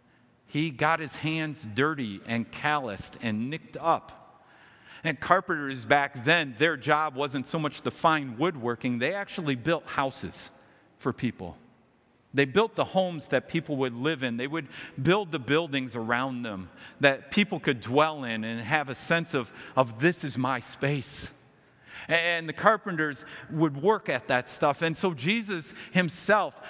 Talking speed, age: 160 wpm, 40-59